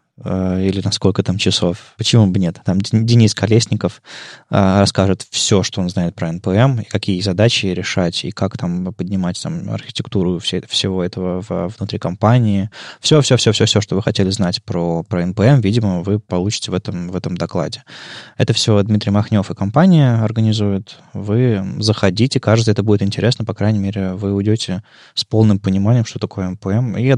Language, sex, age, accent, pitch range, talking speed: Russian, male, 20-39, native, 95-115 Hz, 165 wpm